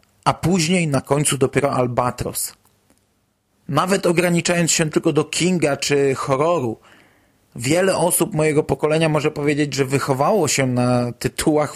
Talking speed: 130 wpm